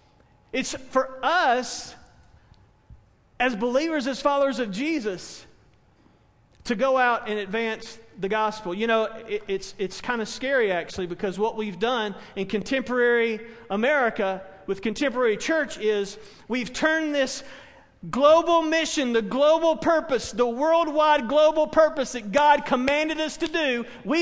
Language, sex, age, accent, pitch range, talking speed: English, male, 40-59, American, 225-290 Hz, 135 wpm